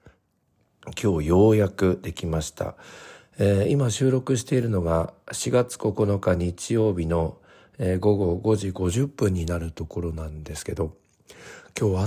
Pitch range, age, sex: 85-110 Hz, 60-79, male